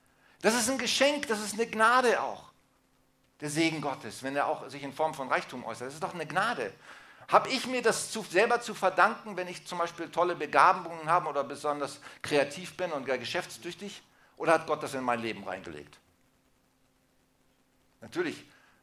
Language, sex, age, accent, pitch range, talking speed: German, male, 50-69, German, 130-180 Hz, 180 wpm